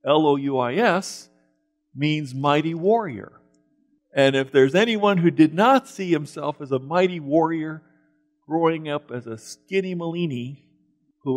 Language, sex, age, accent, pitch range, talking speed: English, male, 50-69, American, 120-170 Hz, 125 wpm